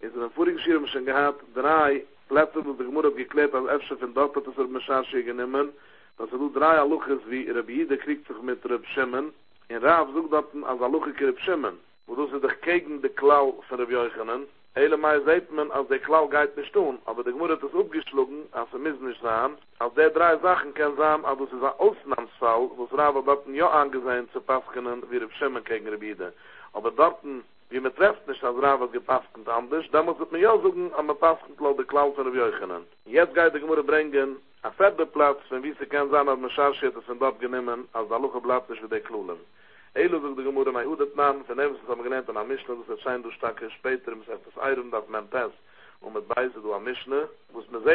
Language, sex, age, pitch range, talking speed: English, male, 60-79, 130-165 Hz, 160 wpm